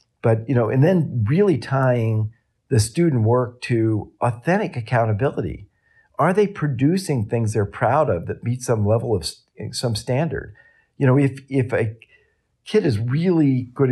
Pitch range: 105-140 Hz